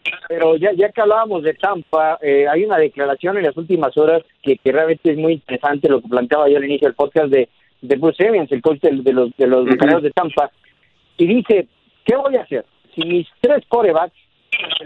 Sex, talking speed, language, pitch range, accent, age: male, 215 wpm, Spanish, 155-210 Hz, Mexican, 50-69